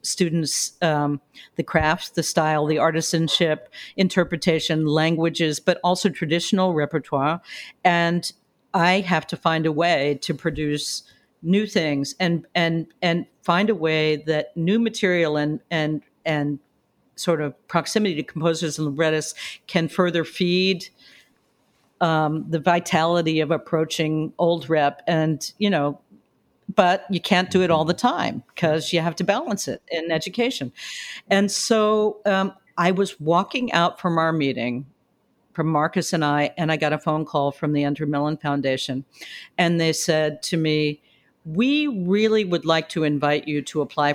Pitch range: 150-180 Hz